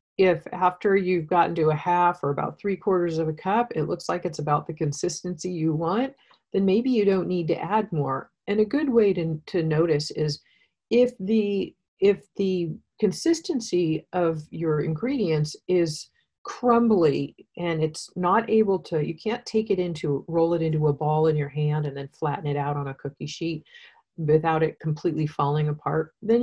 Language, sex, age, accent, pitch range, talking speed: English, female, 40-59, American, 155-195 Hz, 185 wpm